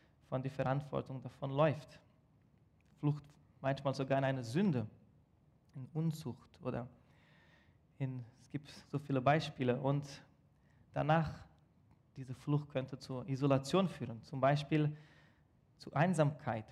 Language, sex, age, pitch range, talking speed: German, male, 20-39, 130-155 Hz, 115 wpm